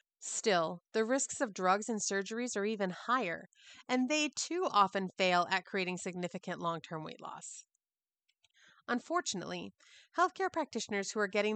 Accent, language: American, English